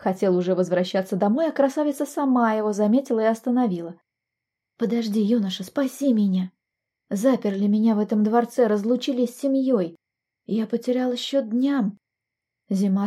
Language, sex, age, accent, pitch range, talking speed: Russian, female, 20-39, native, 195-250 Hz, 130 wpm